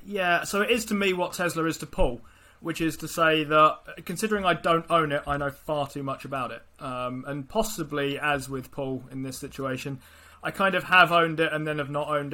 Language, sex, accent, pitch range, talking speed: English, male, British, 135-170 Hz, 235 wpm